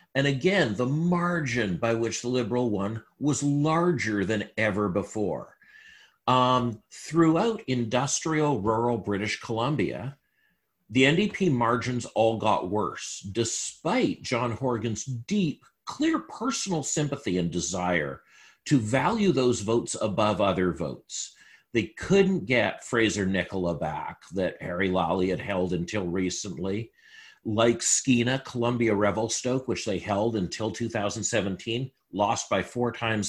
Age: 50-69